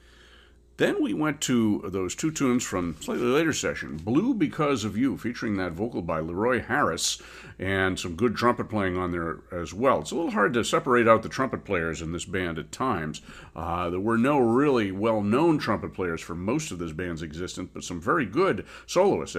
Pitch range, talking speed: 85-115 Hz, 200 wpm